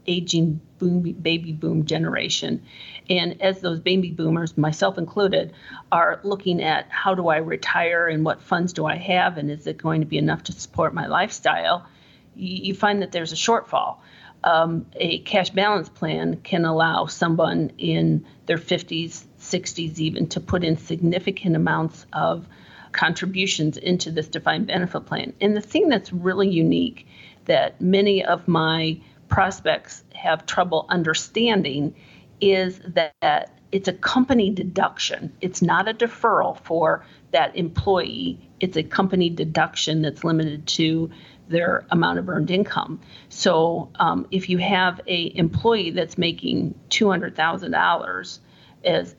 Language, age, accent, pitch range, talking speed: English, 40-59, American, 160-190 Hz, 145 wpm